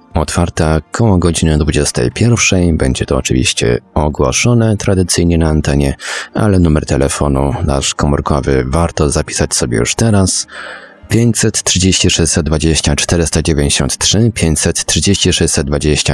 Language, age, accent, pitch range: Polish, 30-49, native, 75-95 Hz